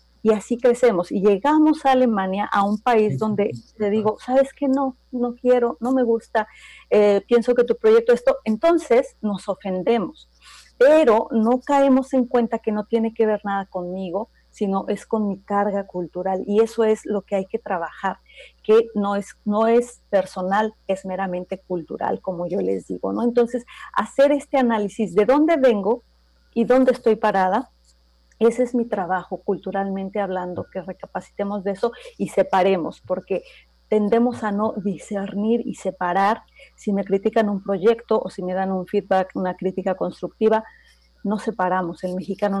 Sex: female